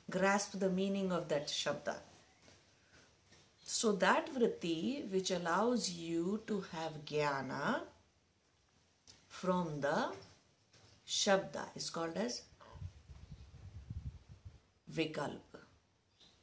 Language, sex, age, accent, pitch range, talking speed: English, female, 50-69, Indian, 160-235 Hz, 80 wpm